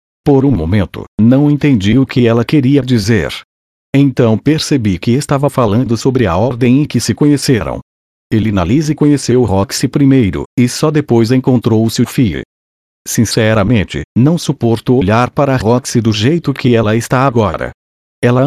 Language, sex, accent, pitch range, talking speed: Portuguese, male, Brazilian, 105-130 Hz, 145 wpm